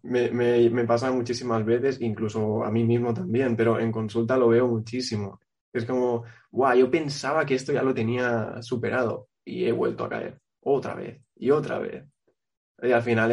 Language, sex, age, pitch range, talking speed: Spanish, male, 20-39, 115-130 Hz, 190 wpm